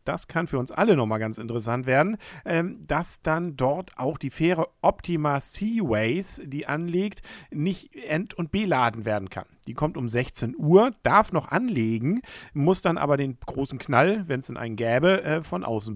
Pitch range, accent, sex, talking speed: 125-175 Hz, German, male, 175 wpm